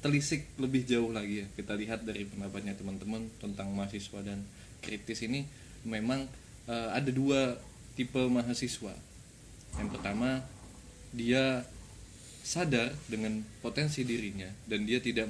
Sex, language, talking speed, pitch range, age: male, Indonesian, 120 wpm, 110-135 Hz, 20-39